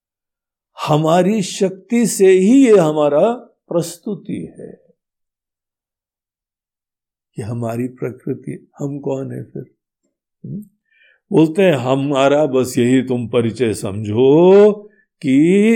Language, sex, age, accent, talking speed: Hindi, male, 60-79, native, 95 wpm